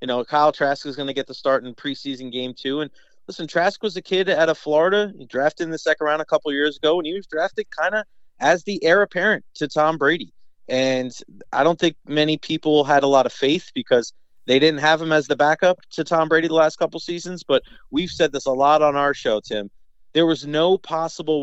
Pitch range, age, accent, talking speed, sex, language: 130-160 Hz, 30-49, American, 245 wpm, male, English